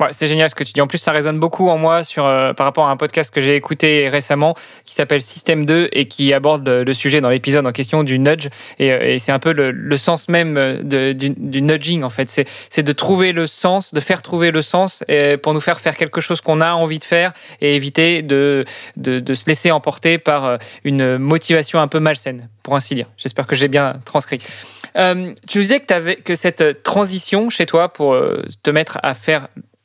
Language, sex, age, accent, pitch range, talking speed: French, male, 20-39, French, 145-170 Hz, 235 wpm